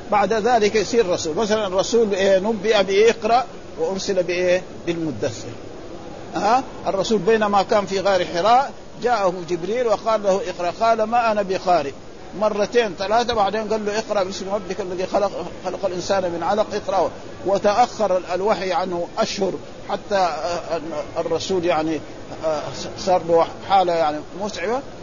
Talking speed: 135 wpm